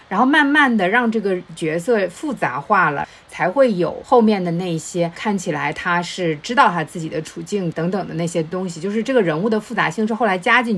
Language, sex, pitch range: Chinese, female, 170-235 Hz